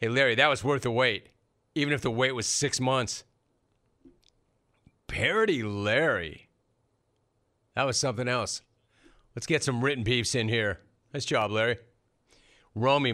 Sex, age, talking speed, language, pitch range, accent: male, 40-59, 140 wpm, English, 120-155 Hz, American